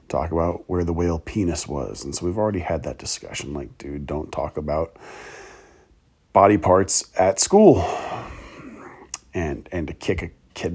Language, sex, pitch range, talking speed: English, male, 100-125 Hz, 160 wpm